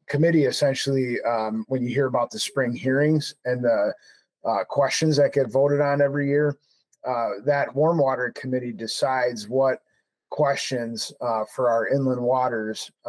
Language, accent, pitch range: English, American, 115-140 Hz